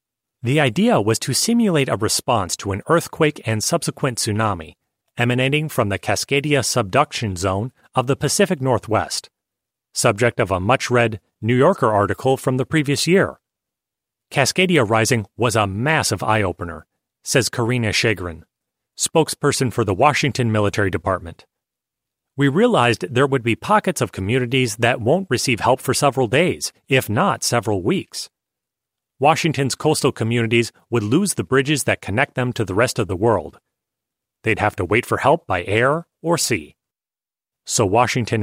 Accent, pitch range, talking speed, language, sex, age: American, 110-145 Hz, 150 wpm, English, male, 30-49